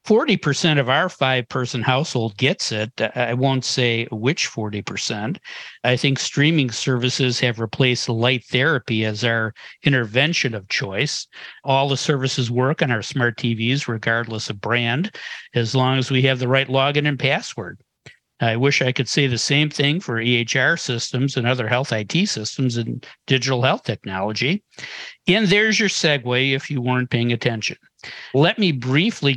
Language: English